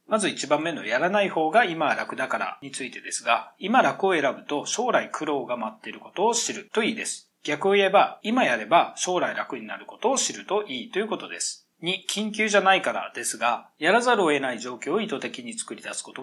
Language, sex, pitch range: Japanese, male, 150-220 Hz